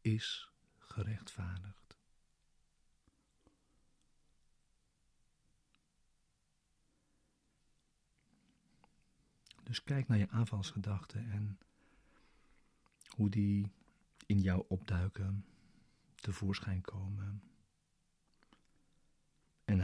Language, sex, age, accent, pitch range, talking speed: Dutch, male, 50-69, Dutch, 95-110 Hz, 50 wpm